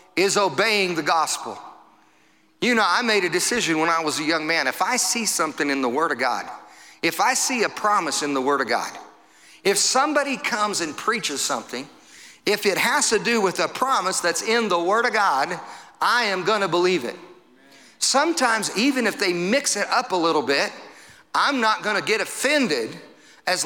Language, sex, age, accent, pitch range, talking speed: English, male, 50-69, American, 205-280 Hz, 200 wpm